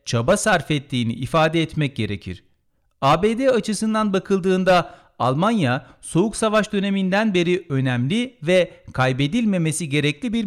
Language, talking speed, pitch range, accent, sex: Turkish, 110 wpm, 135-185 Hz, native, male